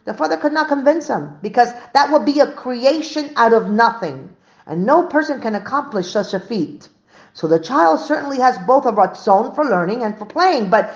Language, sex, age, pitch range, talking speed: English, female, 50-69, 220-290 Hz, 205 wpm